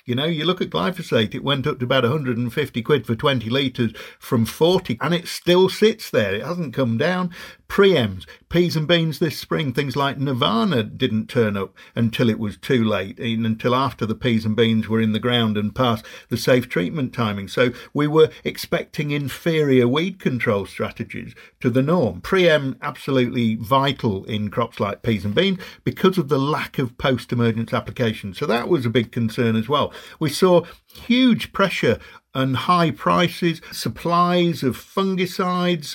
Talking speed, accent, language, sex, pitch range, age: 175 wpm, British, English, male, 115-165 Hz, 50-69